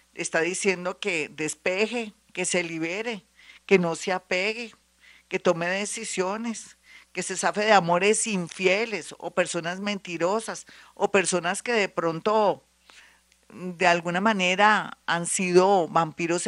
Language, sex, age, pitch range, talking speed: Spanish, female, 50-69, 160-195 Hz, 125 wpm